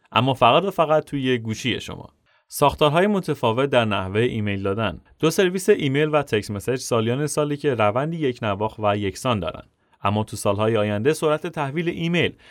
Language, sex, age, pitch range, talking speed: Persian, male, 30-49, 110-145 Hz, 165 wpm